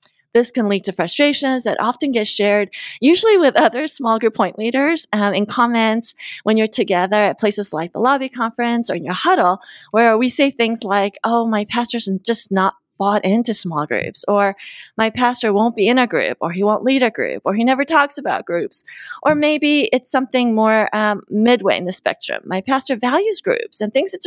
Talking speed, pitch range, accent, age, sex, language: 205 wpm, 205-275 Hz, American, 30-49, female, English